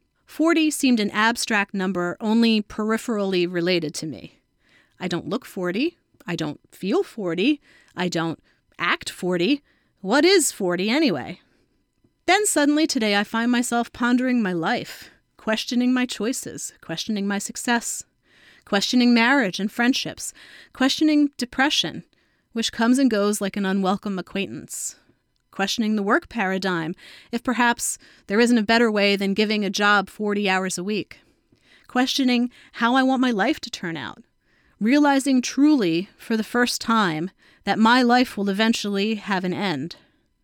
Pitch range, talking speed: 195-255 Hz, 145 wpm